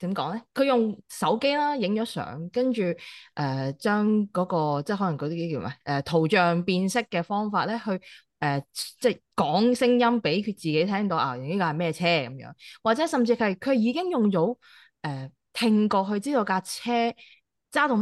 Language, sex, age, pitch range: Chinese, female, 20-39, 165-245 Hz